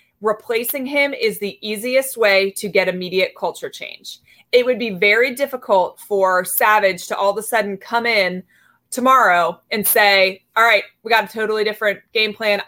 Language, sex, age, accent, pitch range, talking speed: English, female, 30-49, American, 200-250 Hz, 175 wpm